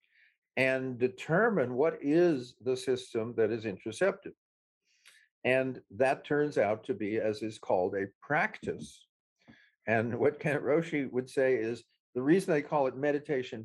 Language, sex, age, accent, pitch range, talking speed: English, male, 50-69, American, 120-150 Hz, 145 wpm